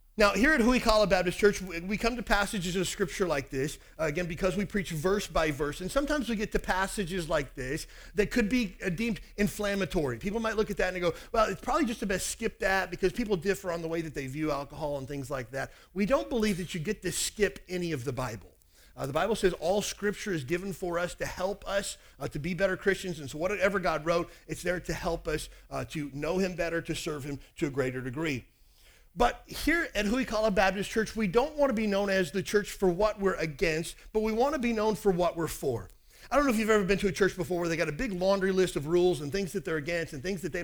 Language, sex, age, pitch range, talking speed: English, male, 40-59, 160-205 Hz, 260 wpm